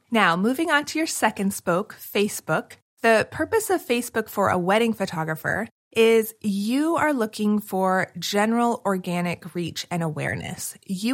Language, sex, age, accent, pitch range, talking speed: English, female, 30-49, American, 180-235 Hz, 145 wpm